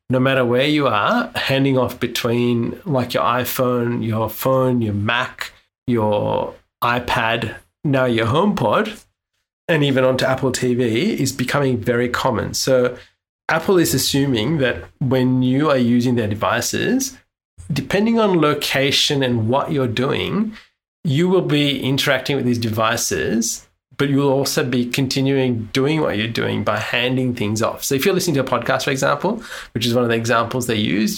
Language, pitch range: English, 120-140 Hz